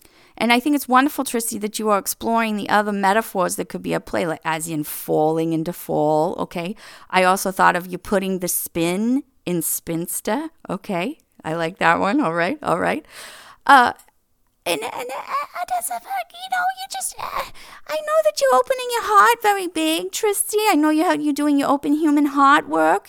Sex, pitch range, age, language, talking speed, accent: female, 210-335 Hz, 40-59, English, 185 wpm, American